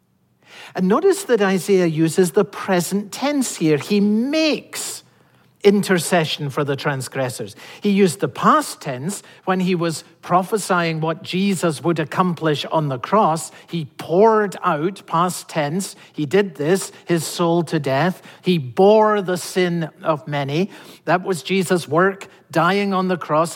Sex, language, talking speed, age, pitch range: male, English, 145 wpm, 50-69, 145-205 Hz